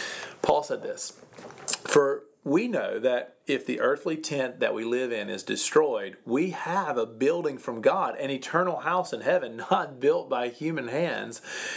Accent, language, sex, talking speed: American, English, male, 170 wpm